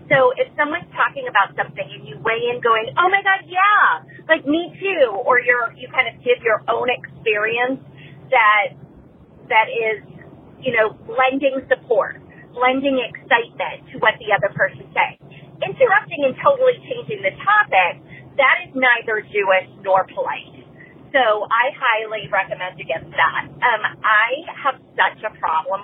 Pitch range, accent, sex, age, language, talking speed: 205-315 Hz, American, female, 30-49, English, 155 wpm